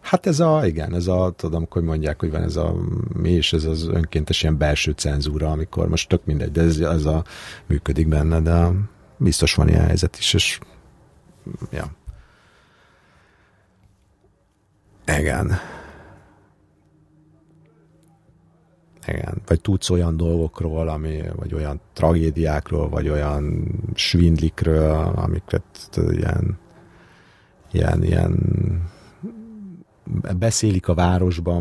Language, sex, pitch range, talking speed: Hungarian, male, 80-100 Hz, 115 wpm